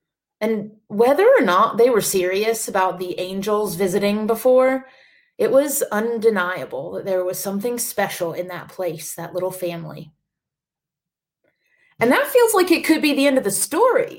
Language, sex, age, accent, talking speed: English, female, 30-49, American, 160 wpm